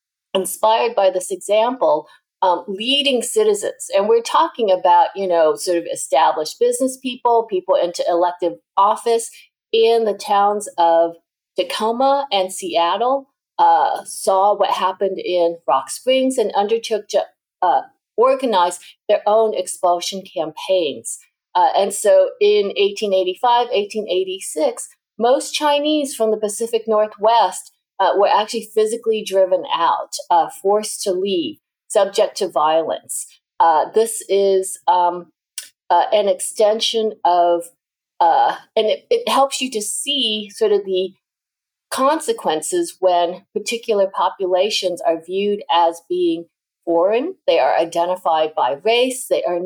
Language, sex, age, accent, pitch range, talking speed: English, female, 50-69, American, 185-265 Hz, 125 wpm